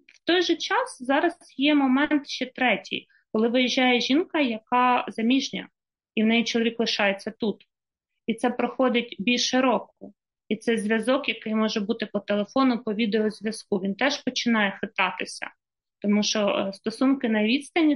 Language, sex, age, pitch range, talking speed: Ukrainian, female, 30-49, 220-265 Hz, 145 wpm